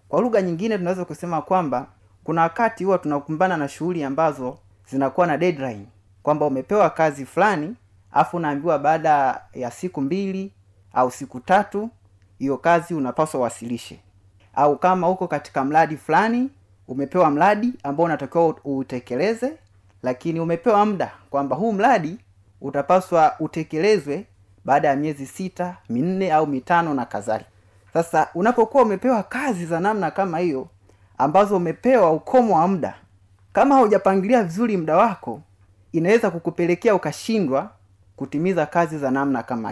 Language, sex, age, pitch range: Swahili, male, 30-49, 125-190 Hz